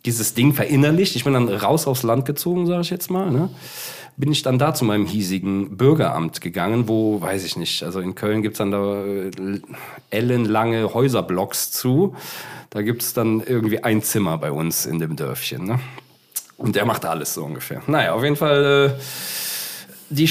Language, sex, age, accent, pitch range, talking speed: German, male, 40-59, German, 110-145 Hz, 185 wpm